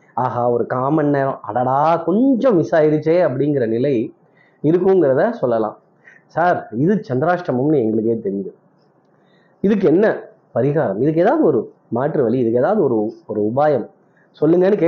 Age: 30-49